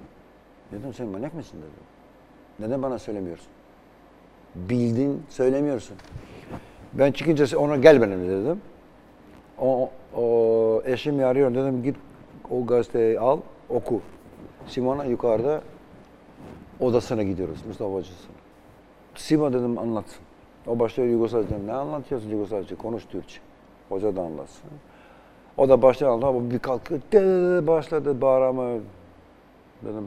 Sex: male